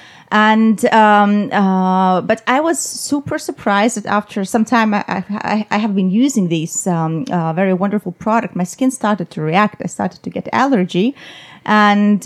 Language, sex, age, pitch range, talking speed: English, female, 30-49, 185-230 Hz, 170 wpm